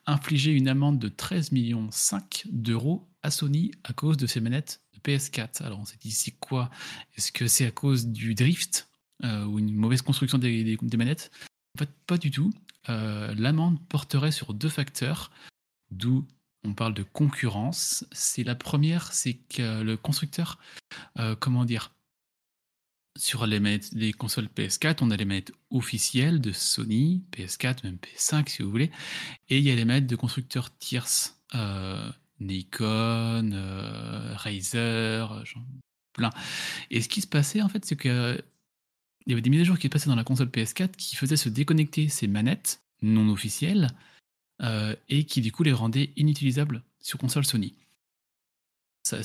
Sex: male